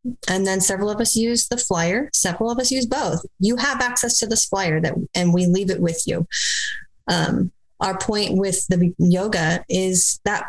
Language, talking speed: English, 195 wpm